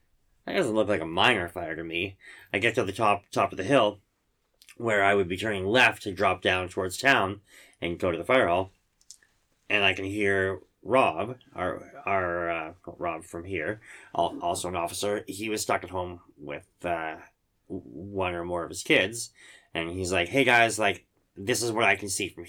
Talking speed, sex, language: 200 wpm, male, English